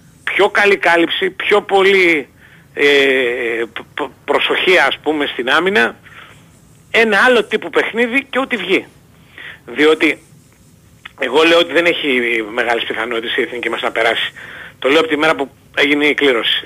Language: Greek